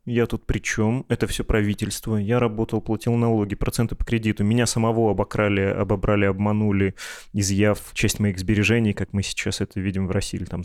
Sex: male